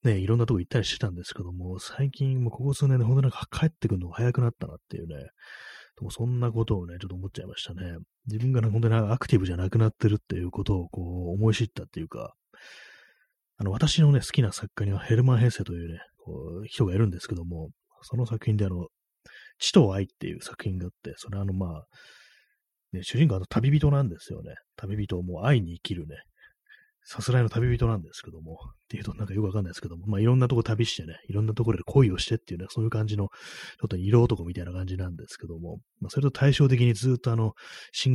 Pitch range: 90-120 Hz